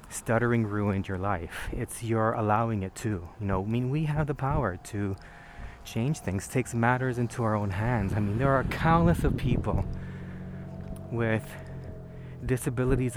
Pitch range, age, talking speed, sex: 95-120 Hz, 30-49, 165 wpm, male